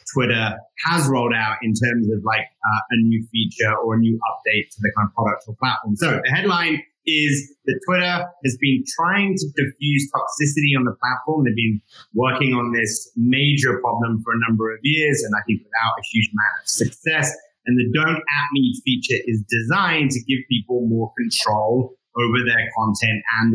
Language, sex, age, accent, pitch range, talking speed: English, male, 30-49, British, 115-145 Hz, 195 wpm